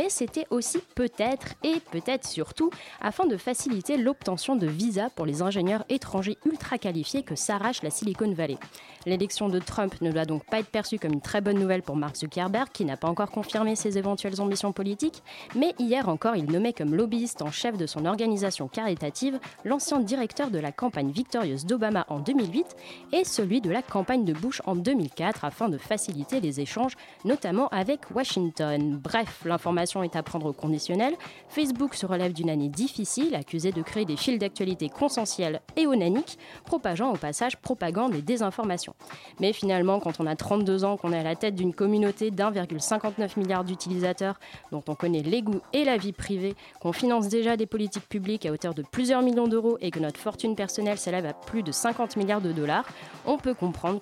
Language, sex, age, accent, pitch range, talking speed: French, female, 20-39, French, 170-240 Hz, 190 wpm